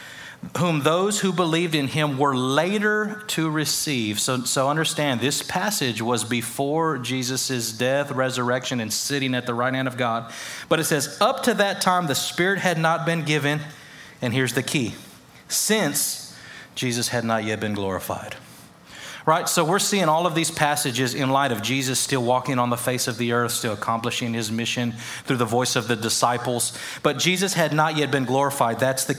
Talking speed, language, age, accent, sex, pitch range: 185 wpm, English, 30-49, American, male, 125-165 Hz